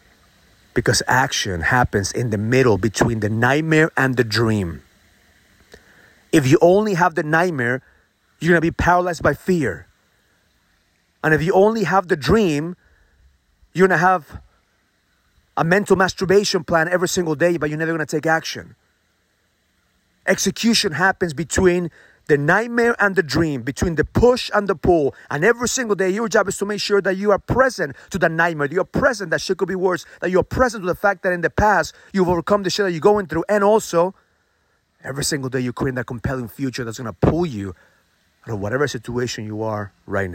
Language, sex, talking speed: English, male, 190 wpm